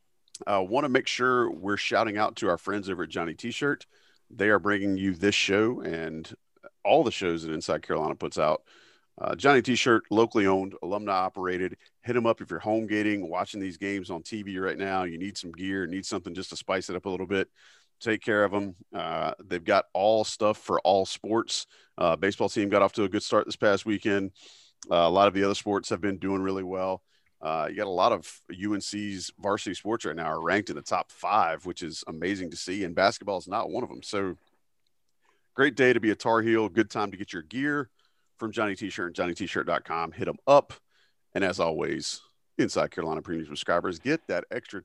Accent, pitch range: American, 95-110 Hz